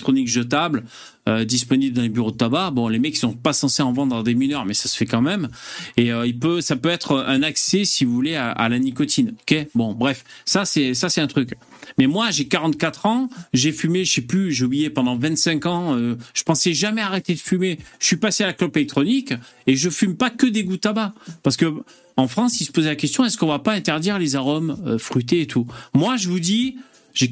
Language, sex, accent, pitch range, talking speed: French, male, French, 135-210 Hz, 255 wpm